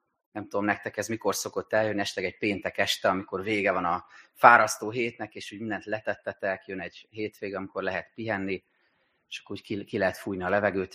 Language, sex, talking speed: Hungarian, male, 195 wpm